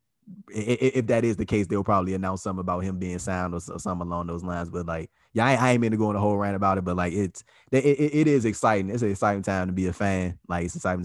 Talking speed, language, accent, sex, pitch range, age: 265 wpm, English, American, male, 90-110 Hz, 20-39